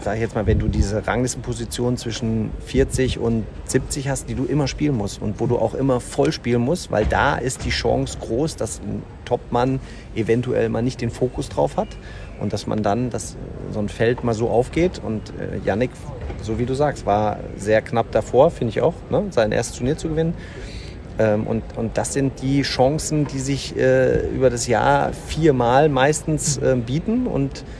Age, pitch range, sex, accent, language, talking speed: 40-59, 110-140 Hz, male, German, German, 195 wpm